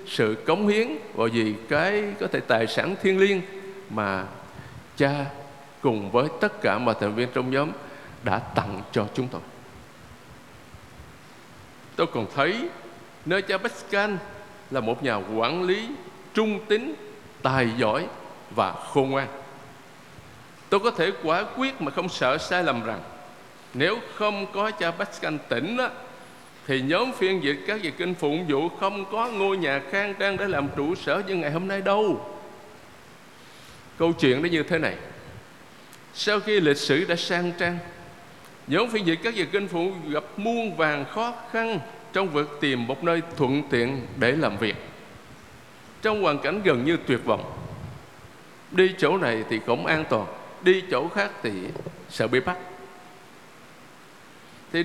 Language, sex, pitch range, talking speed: Vietnamese, male, 130-195 Hz, 160 wpm